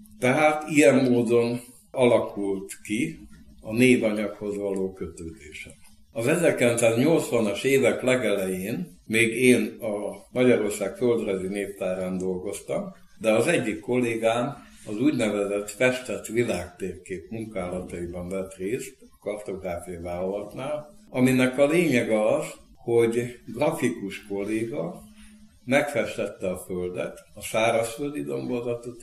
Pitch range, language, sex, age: 95-125 Hz, Hungarian, male, 60-79